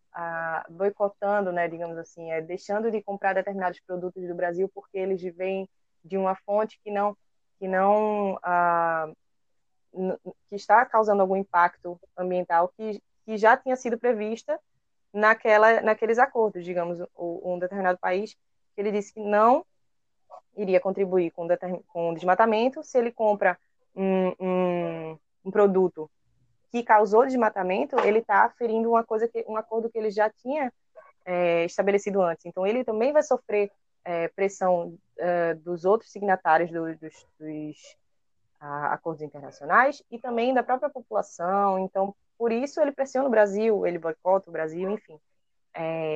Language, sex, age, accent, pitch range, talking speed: Portuguese, female, 20-39, Brazilian, 175-215 Hz, 150 wpm